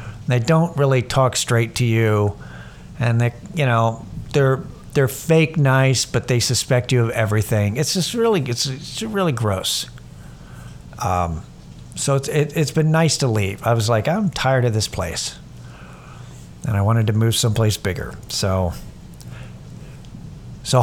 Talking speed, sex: 155 wpm, male